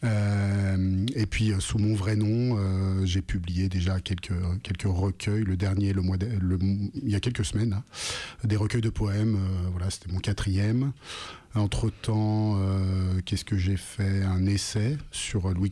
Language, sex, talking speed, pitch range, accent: French, male, 160 wpm, 95-110 Hz, French